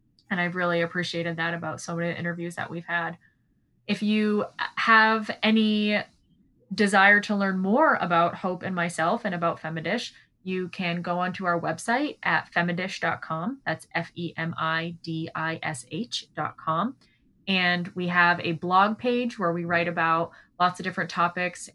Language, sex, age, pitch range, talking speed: English, female, 20-39, 165-190 Hz, 145 wpm